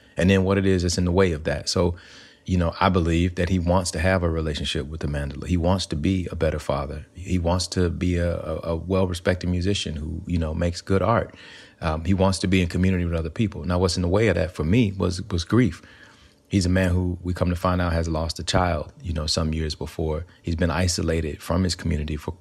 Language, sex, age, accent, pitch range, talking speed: English, male, 30-49, American, 80-95 Hz, 250 wpm